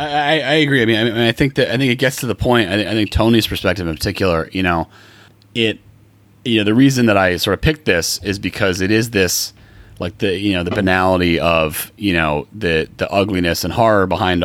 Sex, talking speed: male, 235 wpm